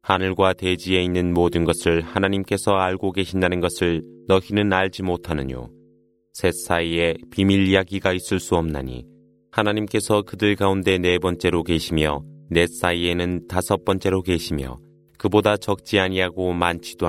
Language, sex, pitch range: Korean, male, 85-100 Hz